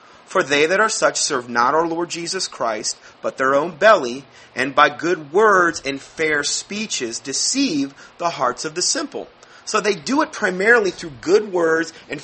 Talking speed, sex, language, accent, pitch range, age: 180 wpm, male, English, American, 140-185 Hz, 30-49